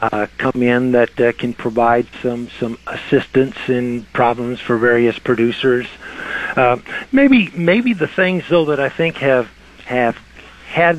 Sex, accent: male, American